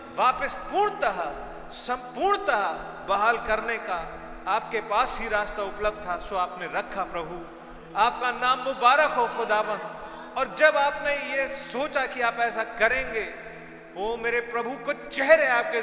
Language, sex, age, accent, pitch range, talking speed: Hindi, male, 40-59, native, 190-255 Hz, 135 wpm